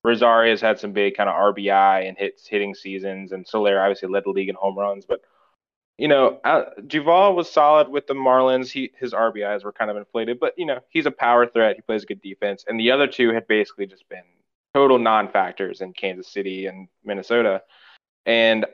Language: English